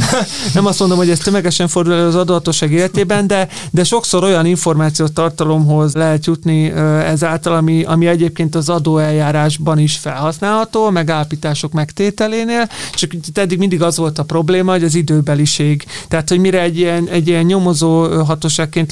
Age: 30-49